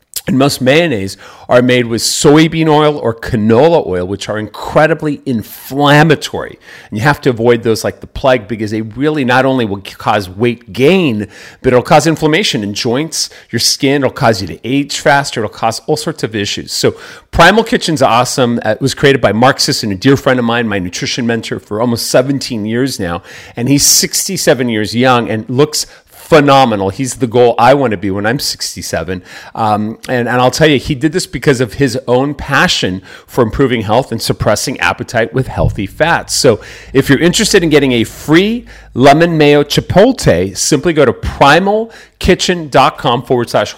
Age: 40-59